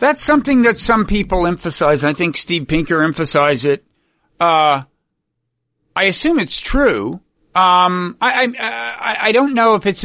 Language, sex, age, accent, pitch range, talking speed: English, male, 50-69, American, 140-185 Hz, 155 wpm